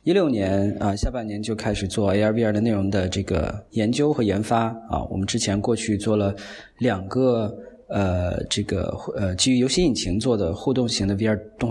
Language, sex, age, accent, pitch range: Chinese, male, 20-39, native, 100-125 Hz